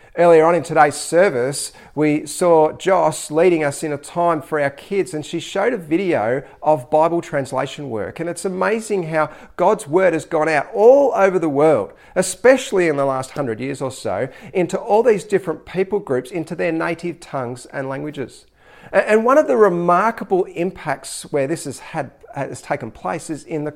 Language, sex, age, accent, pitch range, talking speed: English, male, 40-59, Australian, 140-185 Hz, 185 wpm